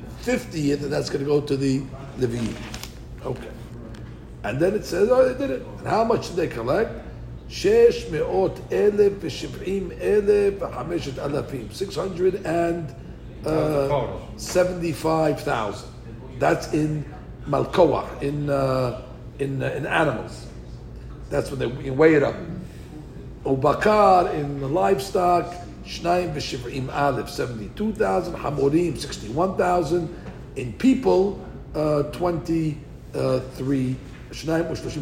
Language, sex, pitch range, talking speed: English, male, 135-190 Hz, 105 wpm